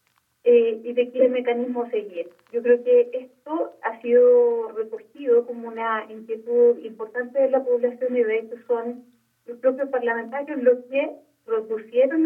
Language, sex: Spanish, female